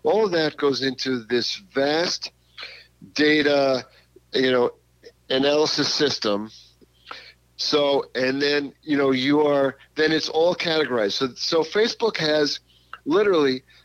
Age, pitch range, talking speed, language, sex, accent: 50-69, 115-155 Hz, 120 wpm, English, male, American